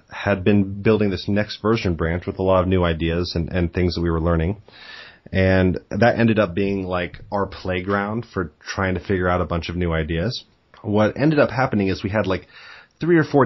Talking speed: 220 wpm